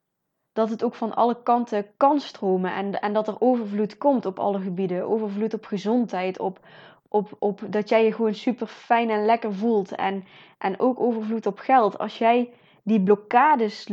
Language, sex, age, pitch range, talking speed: Dutch, female, 20-39, 200-230 Hz, 180 wpm